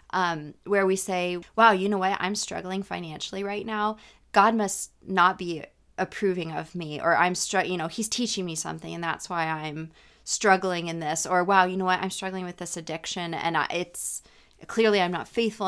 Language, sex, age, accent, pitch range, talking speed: English, female, 20-39, American, 175-210 Hz, 205 wpm